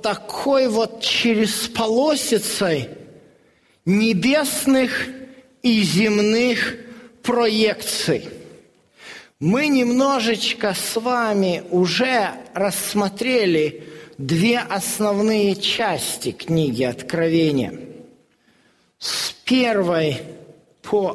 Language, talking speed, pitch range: Russian, 60 wpm, 155-225 Hz